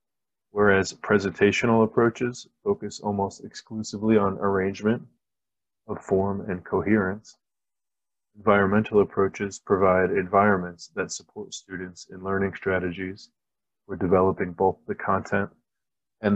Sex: male